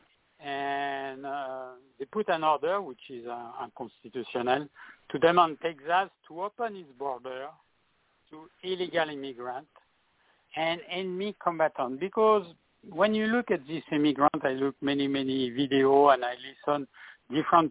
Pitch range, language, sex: 135-165 Hz, English, male